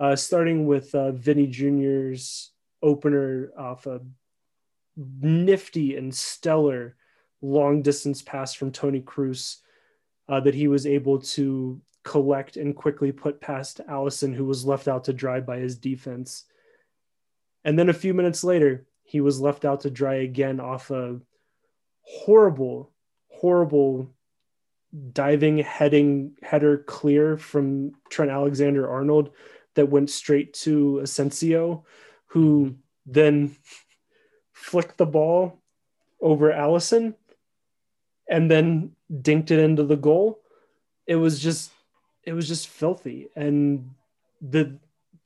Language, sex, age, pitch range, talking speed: English, male, 20-39, 135-155 Hz, 120 wpm